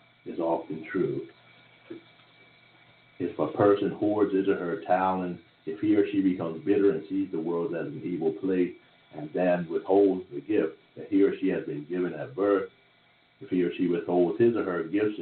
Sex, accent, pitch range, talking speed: male, American, 85-105 Hz, 190 wpm